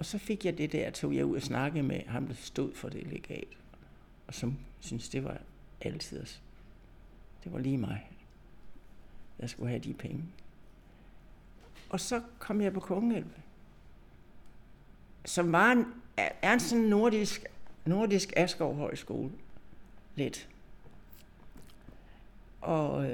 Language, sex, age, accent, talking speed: Danish, male, 60-79, native, 130 wpm